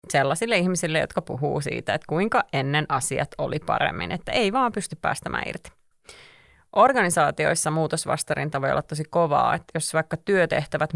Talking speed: 150 wpm